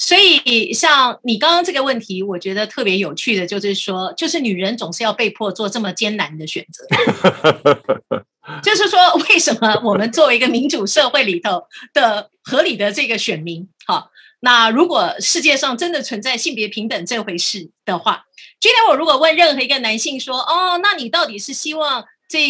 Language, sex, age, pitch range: Chinese, female, 30-49, 205-305 Hz